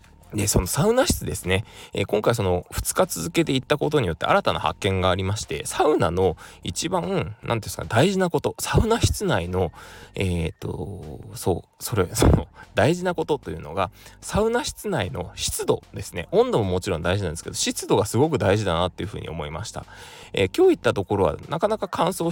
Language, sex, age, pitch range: Japanese, male, 20-39, 90-145 Hz